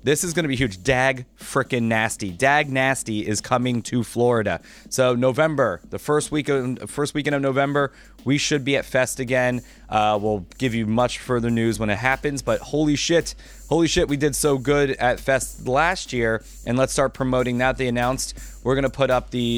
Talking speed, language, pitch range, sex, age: 210 wpm, English, 105-130 Hz, male, 30-49